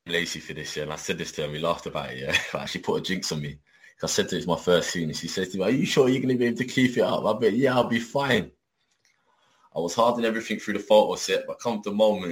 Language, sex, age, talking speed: English, male, 20-39, 320 wpm